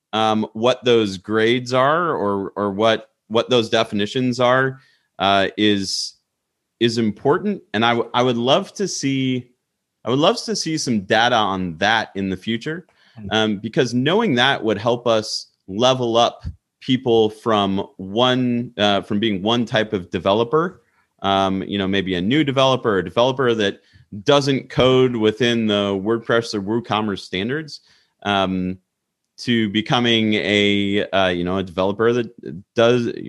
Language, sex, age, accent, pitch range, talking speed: English, male, 30-49, American, 95-125 Hz, 150 wpm